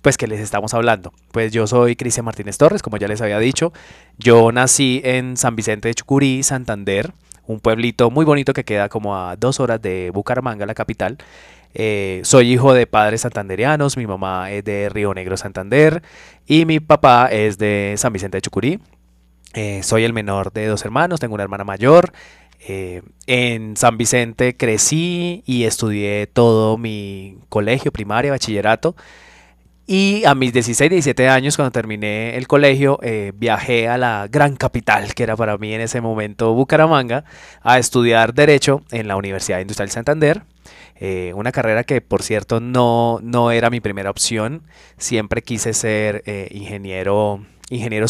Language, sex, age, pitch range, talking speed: Spanish, male, 20-39, 105-130 Hz, 165 wpm